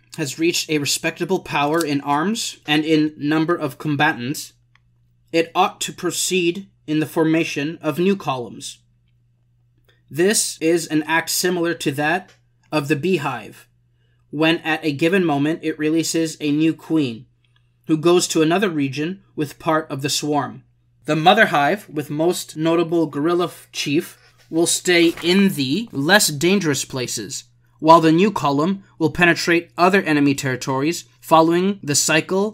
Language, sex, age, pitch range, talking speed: English, male, 20-39, 135-170 Hz, 145 wpm